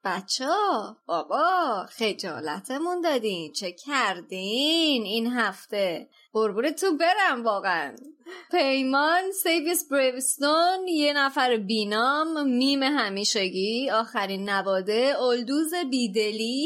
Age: 30-49